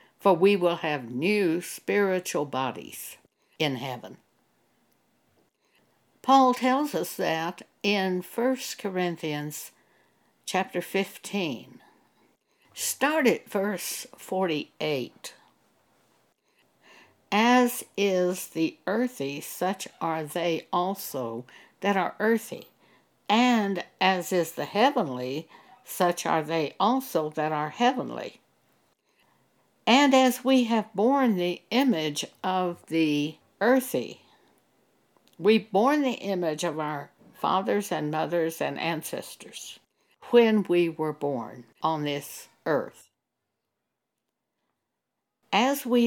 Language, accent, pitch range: English, American, 165-240 Hz